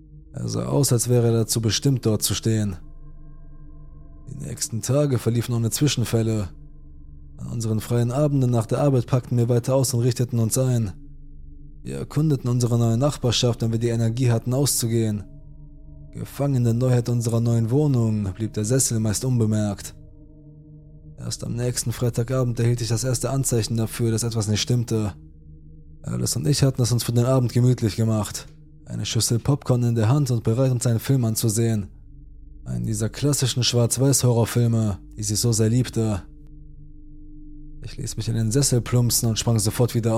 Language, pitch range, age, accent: German, 105-125 Hz, 20-39, German